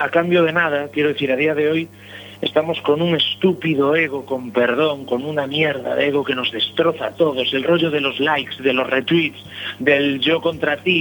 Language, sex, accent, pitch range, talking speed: Spanish, male, Spanish, 130-175 Hz, 215 wpm